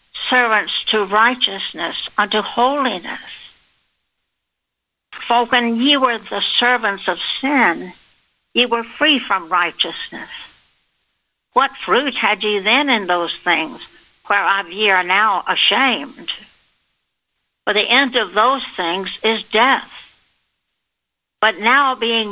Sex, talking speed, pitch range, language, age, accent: female, 115 wpm, 190-240 Hz, English, 60-79, American